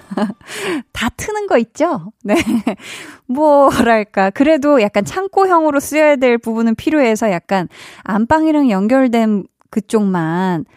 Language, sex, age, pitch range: Korean, female, 20-39, 195-275 Hz